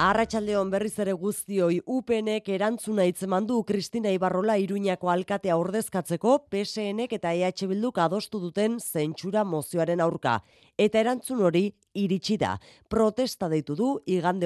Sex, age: female, 30-49